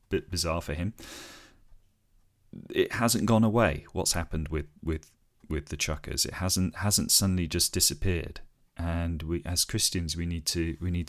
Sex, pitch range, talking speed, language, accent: male, 75-95 Hz, 160 wpm, English, British